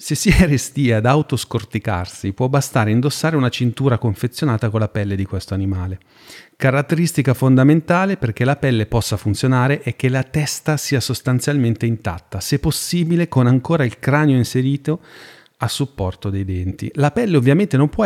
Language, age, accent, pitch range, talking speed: Italian, 40-59, native, 110-145 Hz, 155 wpm